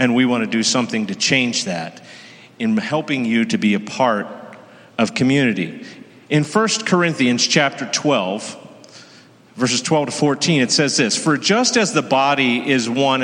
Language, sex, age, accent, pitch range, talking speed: English, male, 40-59, American, 135-180 Hz, 170 wpm